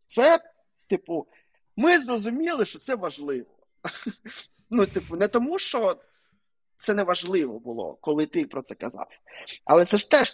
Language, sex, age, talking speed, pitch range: Ukrainian, male, 20-39, 145 wpm, 145-205 Hz